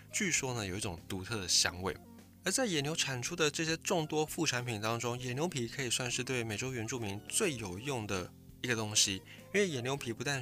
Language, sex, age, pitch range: Chinese, male, 20-39, 105-140 Hz